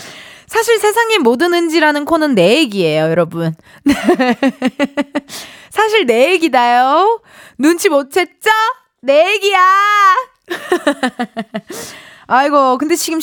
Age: 20-39